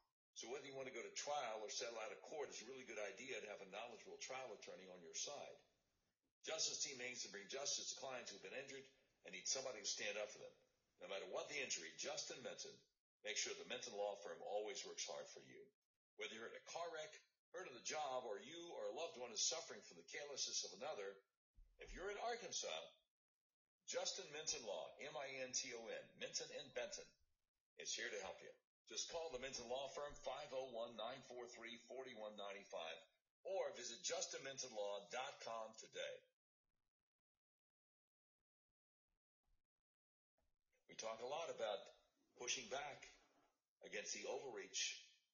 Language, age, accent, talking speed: English, 60-79, American, 165 wpm